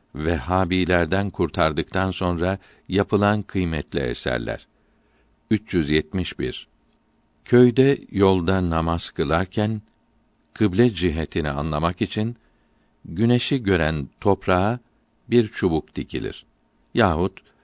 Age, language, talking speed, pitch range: 60-79, Turkish, 75 wpm, 85-105 Hz